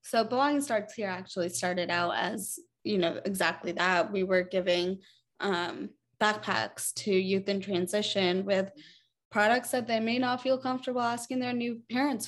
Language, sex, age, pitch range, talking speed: English, female, 20-39, 185-215 Hz, 160 wpm